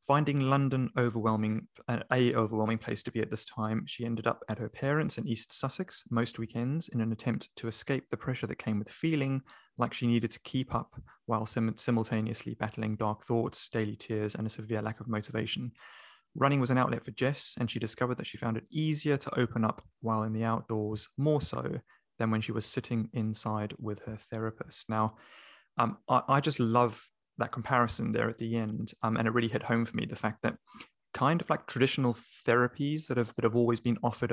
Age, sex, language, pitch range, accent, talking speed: 20-39, male, English, 110-130 Hz, British, 210 wpm